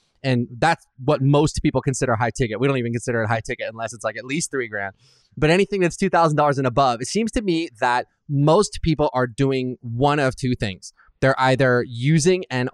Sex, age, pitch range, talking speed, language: male, 20-39, 130-165 Hz, 210 wpm, English